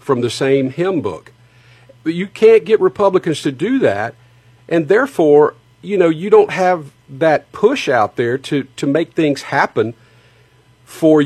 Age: 50-69